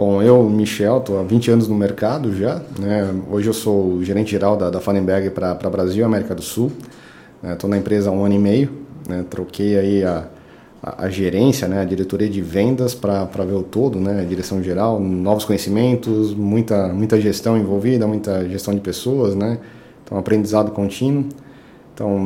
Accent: Brazilian